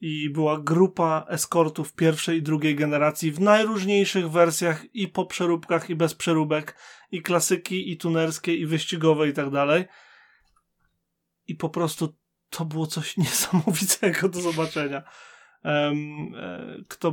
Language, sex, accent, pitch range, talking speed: Polish, male, native, 155-180 Hz, 125 wpm